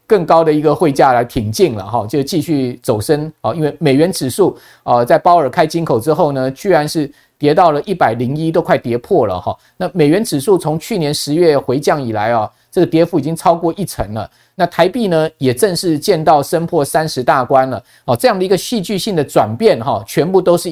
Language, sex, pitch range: Chinese, male, 130-175 Hz